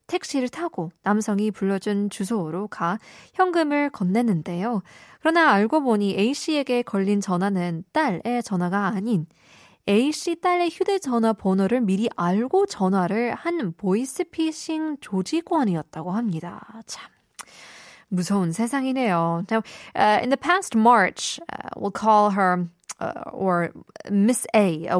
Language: Korean